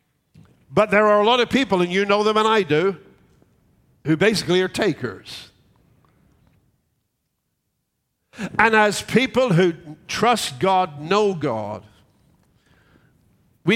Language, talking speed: English, 120 wpm